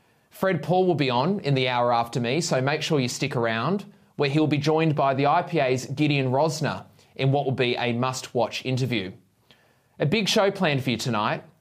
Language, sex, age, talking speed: English, male, 20-39, 200 wpm